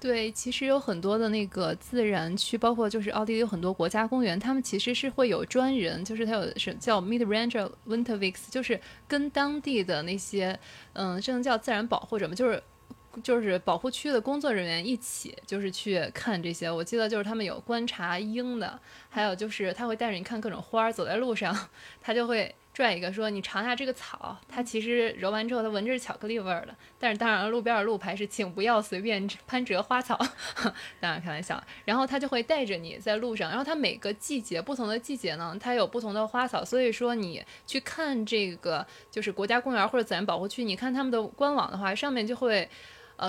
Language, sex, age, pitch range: Chinese, female, 20-39, 205-250 Hz